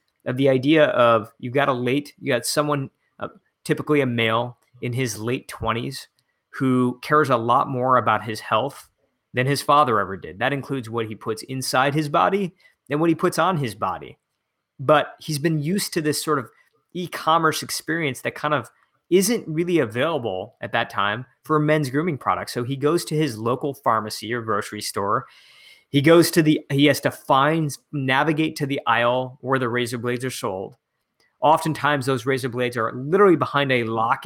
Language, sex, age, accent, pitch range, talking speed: English, male, 30-49, American, 120-150 Hz, 190 wpm